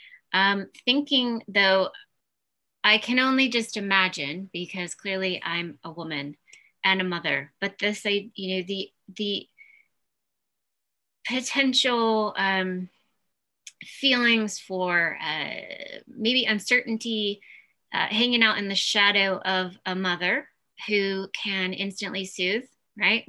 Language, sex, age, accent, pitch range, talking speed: English, female, 20-39, American, 175-220 Hz, 115 wpm